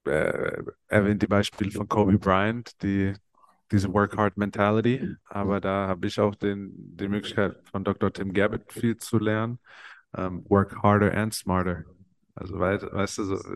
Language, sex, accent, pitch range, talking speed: German, male, German, 95-110 Hz, 150 wpm